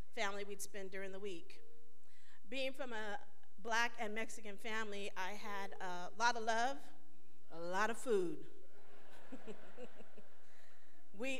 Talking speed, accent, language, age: 125 wpm, American, English, 40-59